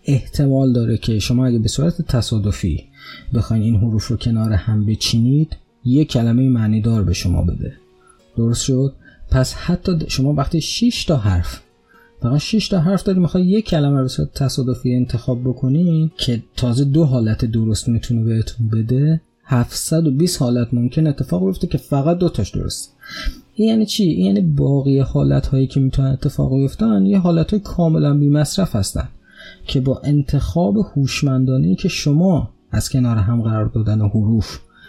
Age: 30-49